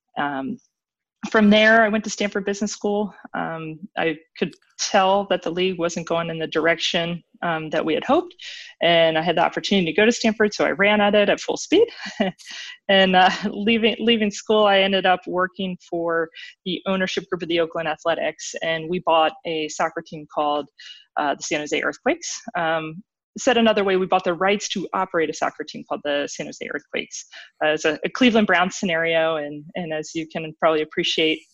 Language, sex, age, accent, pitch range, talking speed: English, female, 20-39, American, 160-210 Hz, 200 wpm